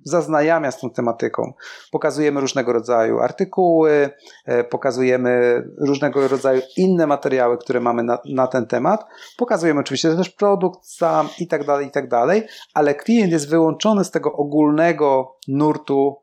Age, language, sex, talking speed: 40-59, Polish, male, 140 wpm